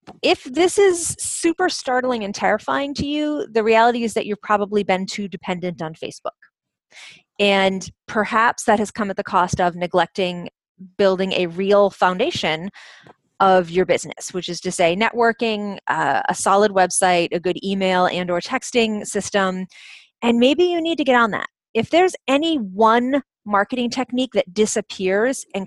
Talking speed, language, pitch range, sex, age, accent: 165 wpm, English, 190-250 Hz, female, 30-49, American